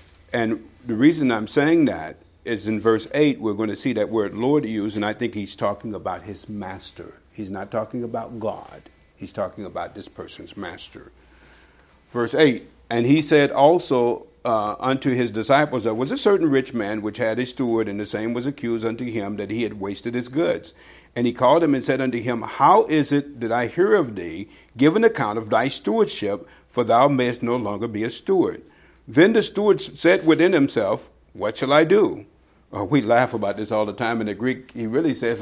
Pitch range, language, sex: 110-170 Hz, English, male